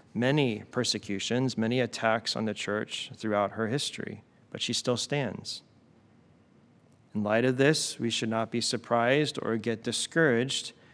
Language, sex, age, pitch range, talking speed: English, male, 30-49, 110-125 Hz, 145 wpm